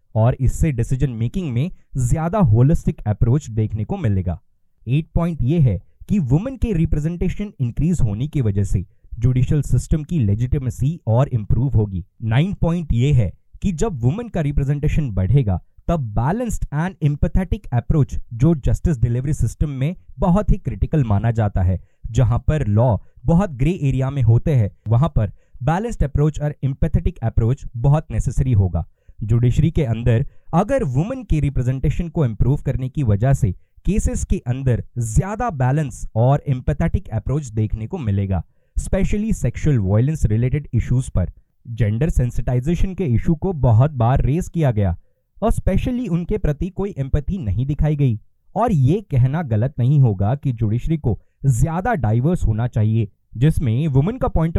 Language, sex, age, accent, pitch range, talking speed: Hindi, male, 20-39, native, 115-155 Hz, 100 wpm